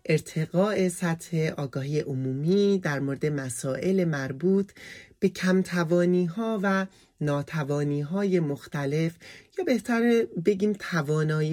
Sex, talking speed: male, 100 wpm